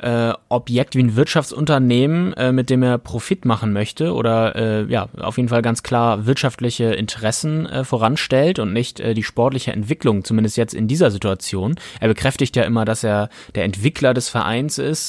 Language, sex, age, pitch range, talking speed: German, male, 20-39, 115-135 Hz, 175 wpm